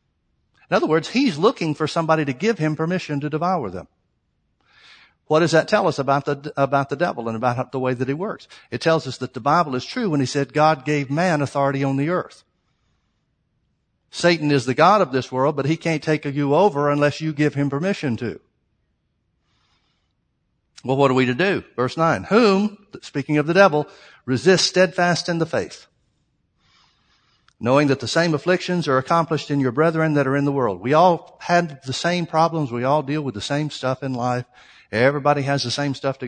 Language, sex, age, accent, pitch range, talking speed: English, male, 60-79, American, 135-170 Hz, 200 wpm